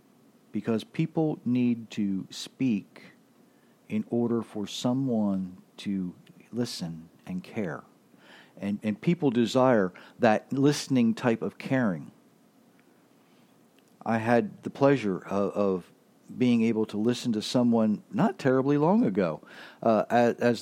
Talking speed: 120 wpm